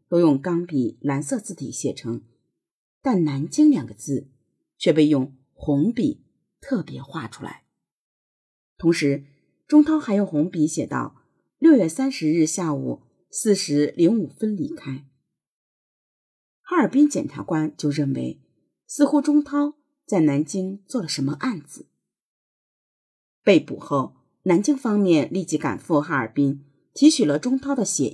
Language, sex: Chinese, female